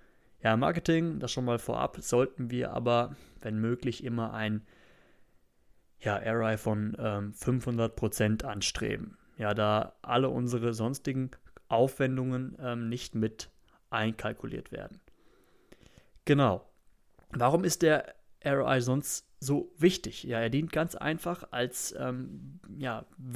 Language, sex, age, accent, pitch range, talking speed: German, male, 30-49, German, 110-135 Hz, 115 wpm